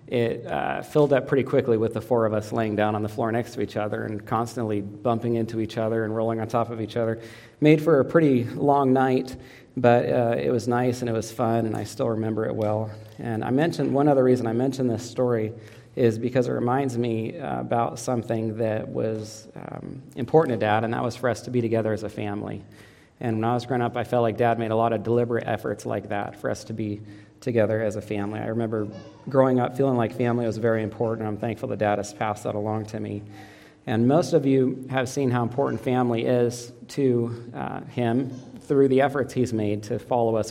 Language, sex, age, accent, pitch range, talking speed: English, male, 40-59, American, 110-125 Hz, 230 wpm